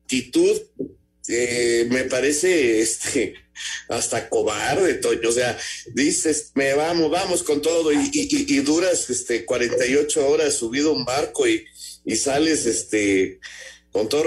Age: 50-69